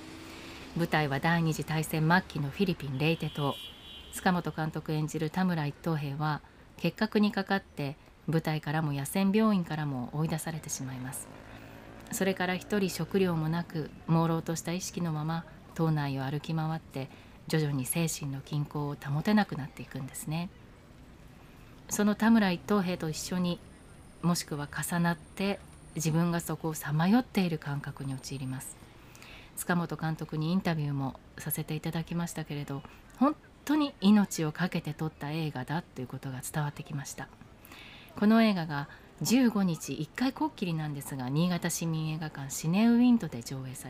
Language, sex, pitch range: Japanese, female, 145-180 Hz